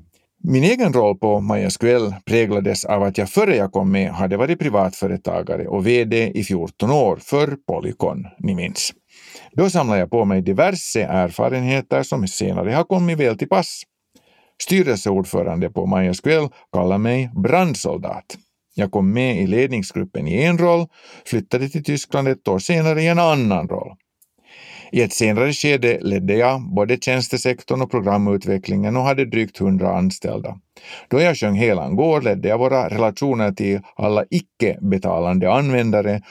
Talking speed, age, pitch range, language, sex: 150 wpm, 50-69, 100-150 Hz, Swedish, male